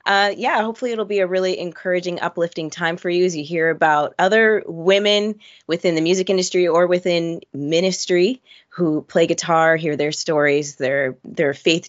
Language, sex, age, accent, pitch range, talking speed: English, female, 20-39, American, 155-200 Hz, 170 wpm